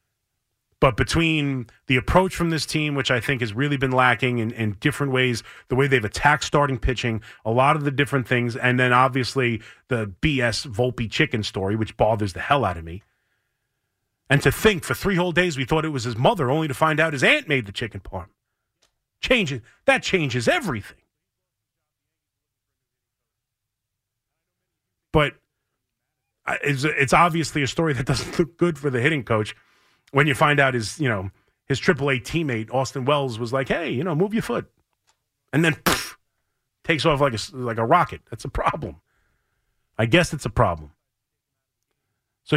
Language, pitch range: English, 115-150 Hz